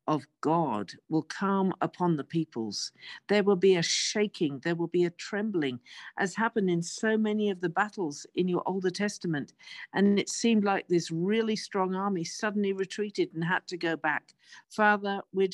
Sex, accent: female, British